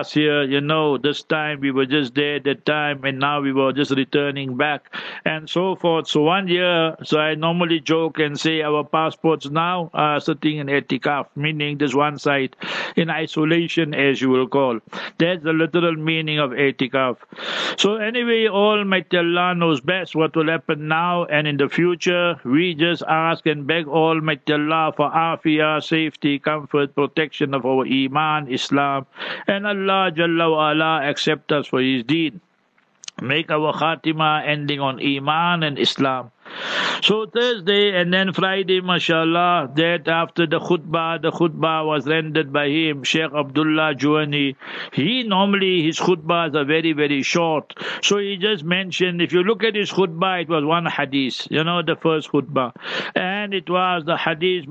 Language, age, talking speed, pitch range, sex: English, 60-79, 170 wpm, 145-170 Hz, male